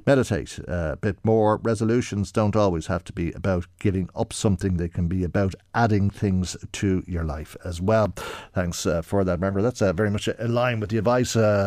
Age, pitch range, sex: 50-69, 90-115 Hz, male